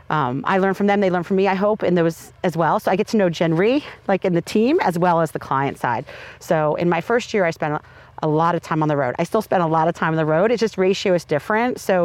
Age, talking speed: 40-59, 305 wpm